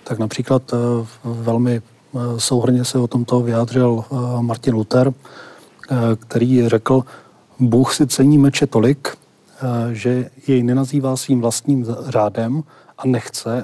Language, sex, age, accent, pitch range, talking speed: Czech, male, 40-59, native, 120-135 Hz, 110 wpm